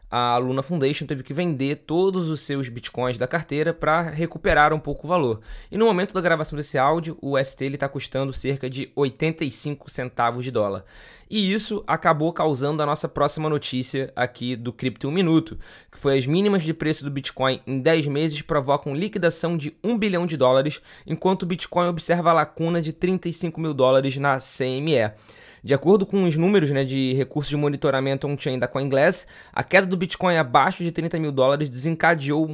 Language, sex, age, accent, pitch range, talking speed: Portuguese, male, 20-39, Brazilian, 135-170 Hz, 190 wpm